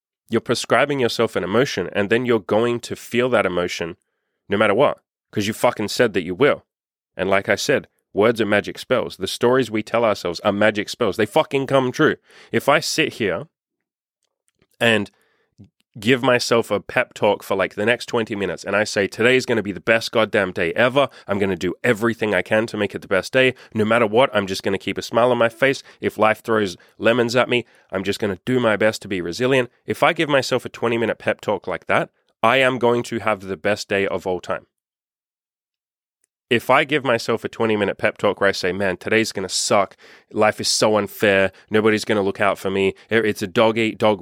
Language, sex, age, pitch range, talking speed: English, male, 30-49, 100-120 Hz, 225 wpm